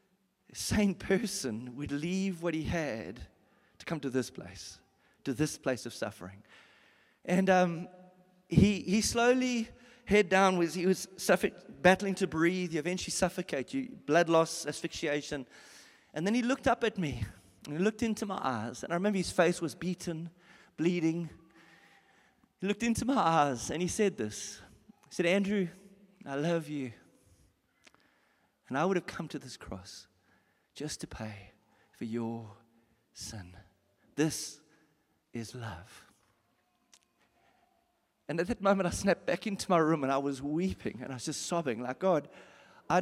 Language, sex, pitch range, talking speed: English, male, 145-190 Hz, 160 wpm